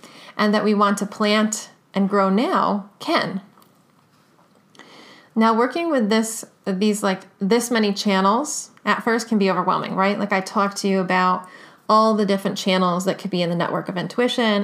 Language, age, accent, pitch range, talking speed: English, 30-49, American, 190-225 Hz, 175 wpm